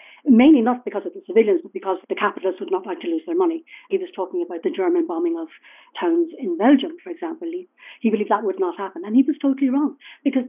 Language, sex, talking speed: English, female, 245 wpm